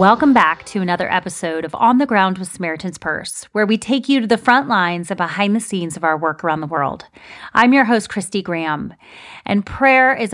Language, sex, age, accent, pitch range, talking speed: English, female, 30-49, American, 170-210 Hz, 220 wpm